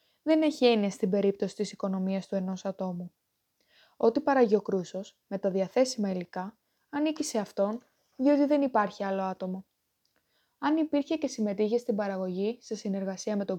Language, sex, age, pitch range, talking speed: Greek, female, 20-39, 200-255 Hz, 160 wpm